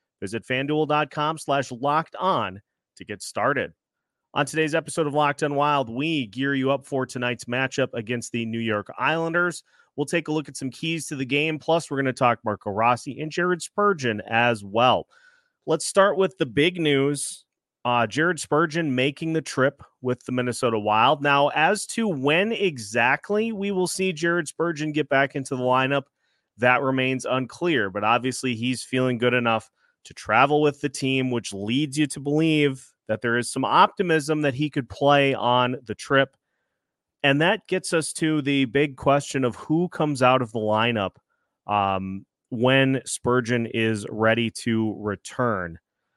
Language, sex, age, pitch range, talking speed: English, male, 30-49, 120-155 Hz, 170 wpm